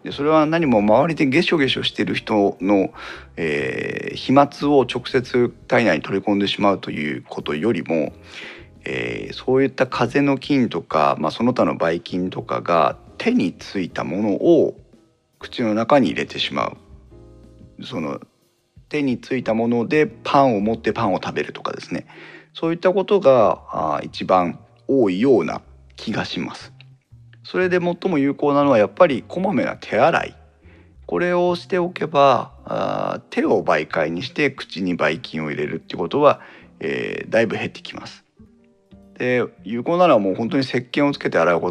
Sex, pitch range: male, 95-145 Hz